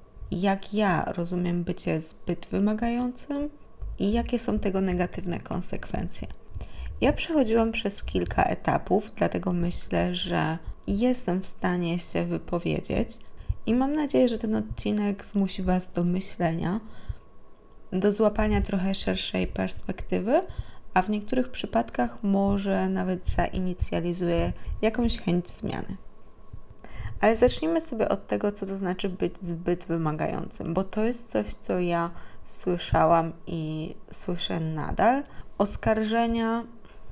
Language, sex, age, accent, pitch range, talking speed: Polish, female, 20-39, native, 175-220 Hz, 115 wpm